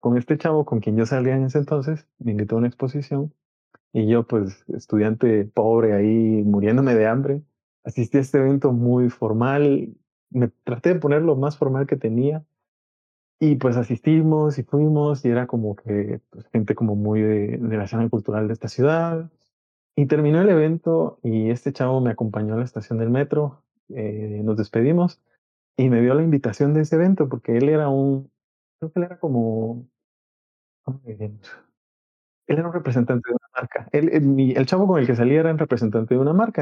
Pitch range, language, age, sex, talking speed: 115-145 Hz, Spanish, 30-49, male, 185 wpm